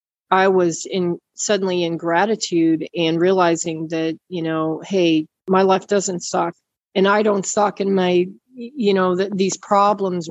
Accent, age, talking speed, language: American, 40-59, 155 wpm, English